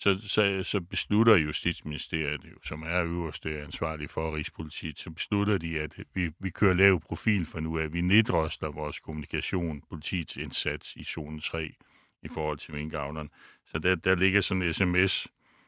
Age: 60-79